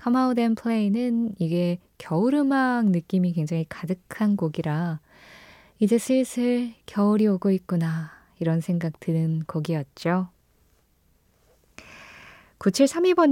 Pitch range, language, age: 165-235 Hz, Korean, 20-39